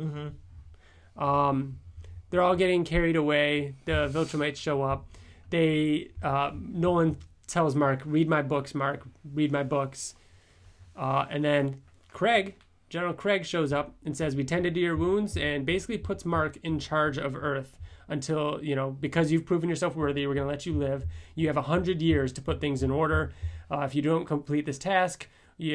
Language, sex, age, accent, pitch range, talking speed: English, male, 30-49, American, 100-155 Hz, 180 wpm